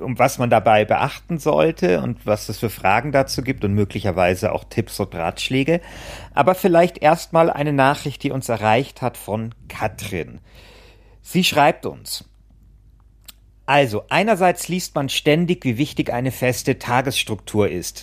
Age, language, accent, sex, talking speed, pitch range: 50-69, German, German, male, 145 wpm, 115-150 Hz